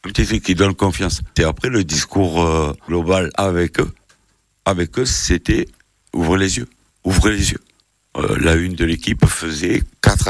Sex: male